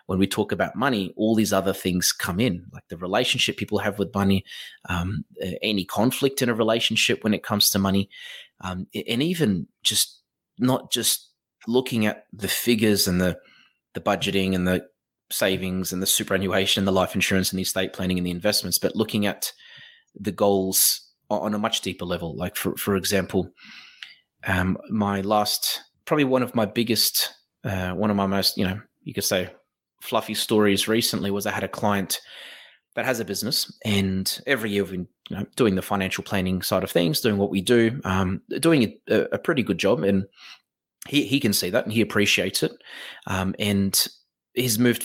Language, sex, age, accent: English, male, 30-49, Australian